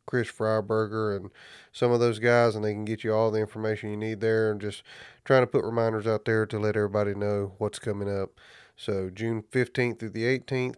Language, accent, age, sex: English, American, 30-49, male